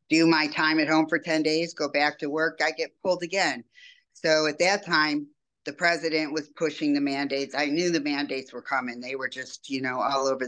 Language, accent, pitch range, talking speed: English, American, 130-150 Hz, 225 wpm